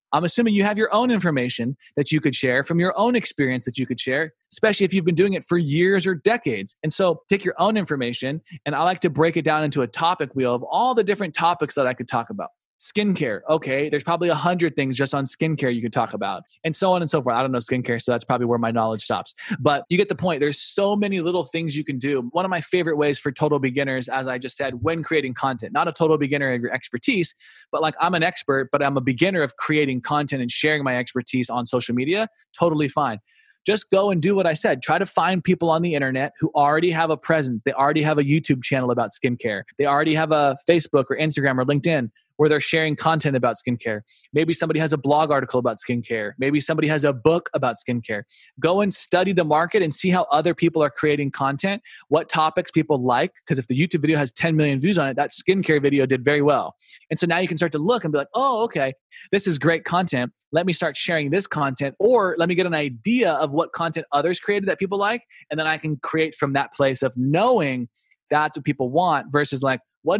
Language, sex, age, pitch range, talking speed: English, male, 20-39, 135-175 Hz, 245 wpm